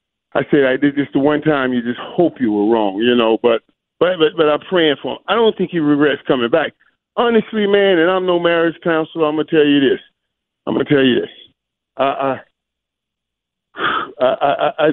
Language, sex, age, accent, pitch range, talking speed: English, male, 40-59, American, 125-165 Hz, 205 wpm